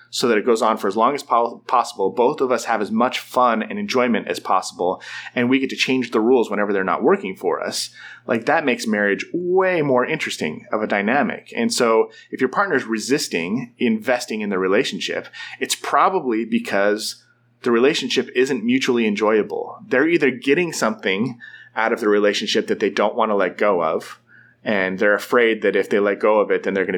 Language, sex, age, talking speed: English, male, 30-49, 205 wpm